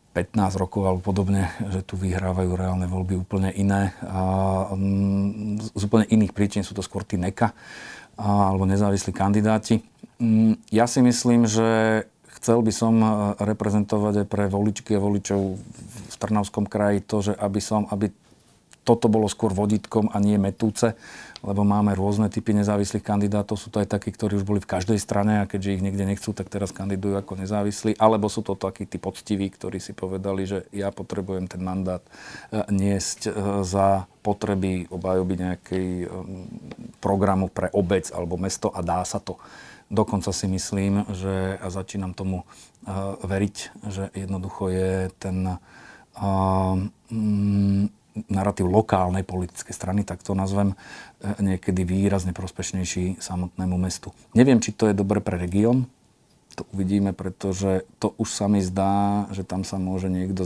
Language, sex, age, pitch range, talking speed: Slovak, male, 40-59, 95-105 Hz, 150 wpm